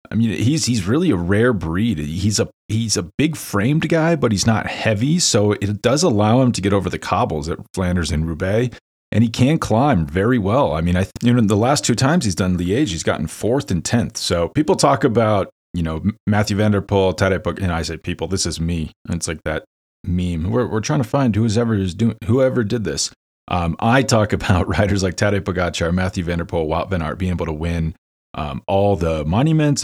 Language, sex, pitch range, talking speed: English, male, 85-115 Hz, 220 wpm